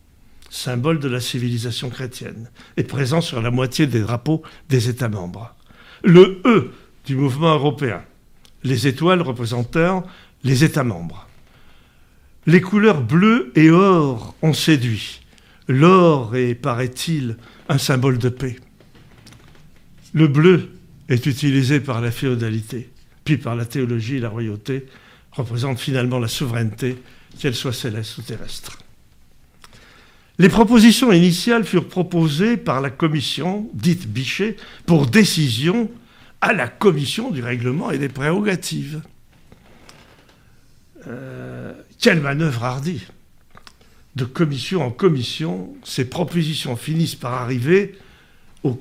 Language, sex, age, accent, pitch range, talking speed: French, male, 60-79, French, 125-175 Hz, 120 wpm